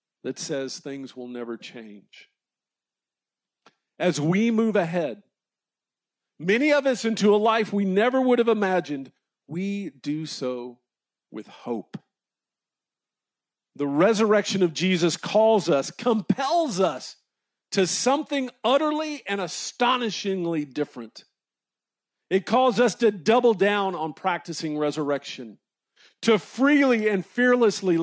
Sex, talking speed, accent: male, 115 wpm, American